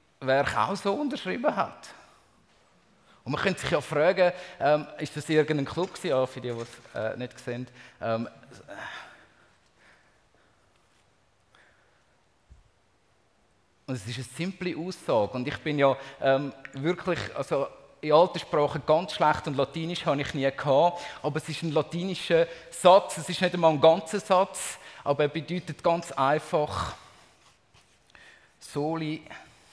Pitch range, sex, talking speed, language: 130-185 Hz, male, 140 wpm, German